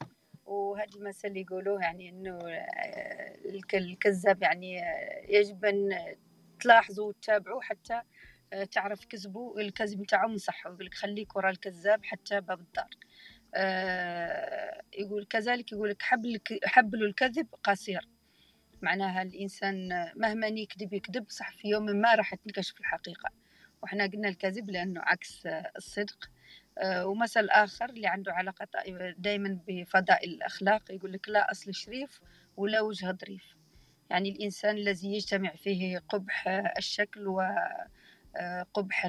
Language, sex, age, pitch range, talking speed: Arabic, female, 40-59, 185-215 Hz, 115 wpm